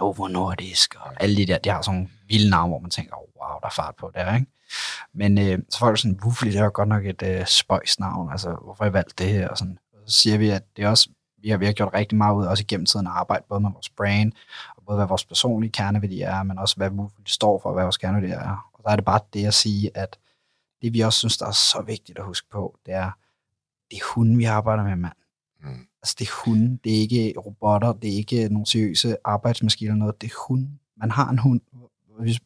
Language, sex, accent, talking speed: English, male, Danish, 265 wpm